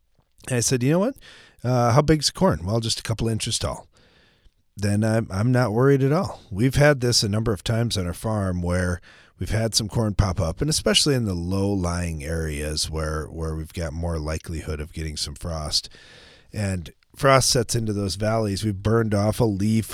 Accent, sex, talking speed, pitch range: American, male, 205 wpm, 80-110 Hz